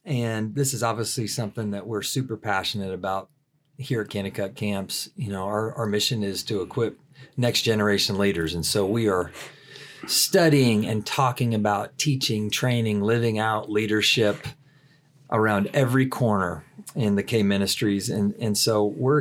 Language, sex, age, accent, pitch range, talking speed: English, male, 40-59, American, 110-140 Hz, 155 wpm